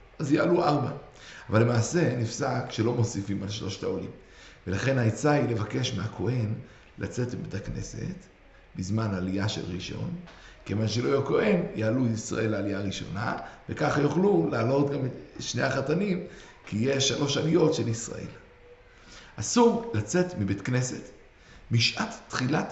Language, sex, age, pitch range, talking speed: Hebrew, male, 60-79, 115-165 Hz, 130 wpm